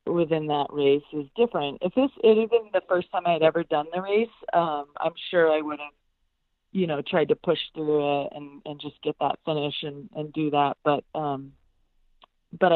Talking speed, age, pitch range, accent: 200 wpm, 30-49, 145-175 Hz, American